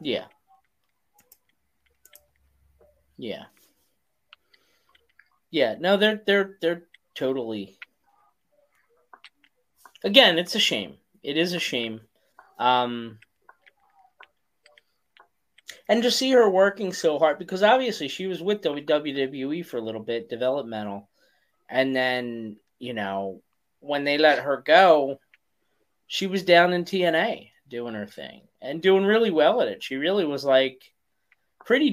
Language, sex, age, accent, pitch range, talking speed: English, male, 30-49, American, 130-195 Hz, 120 wpm